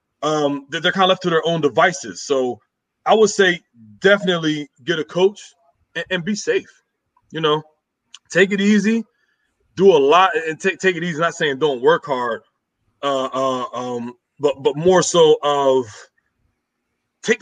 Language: English